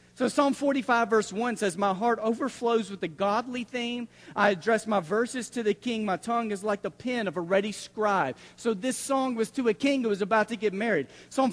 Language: English